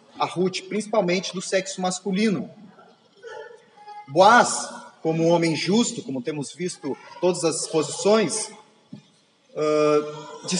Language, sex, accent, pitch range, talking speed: Portuguese, male, Brazilian, 155-205 Hz, 110 wpm